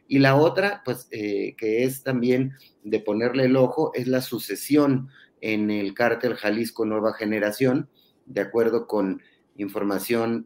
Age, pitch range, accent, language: 30-49, 105-130 Hz, Mexican, Spanish